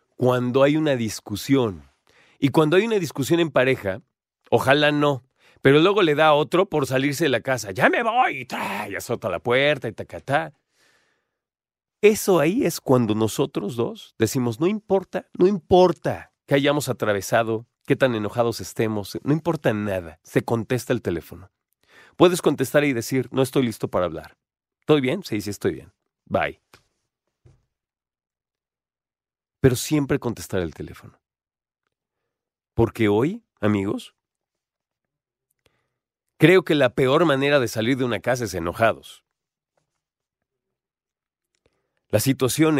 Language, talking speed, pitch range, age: Spanish, 135 wpm, 105-145 Hz, 40-59